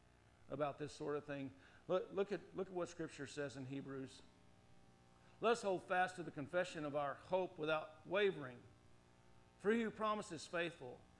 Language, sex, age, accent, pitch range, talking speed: English, male, 50-69, American, 160-240 Hz, 175 wpm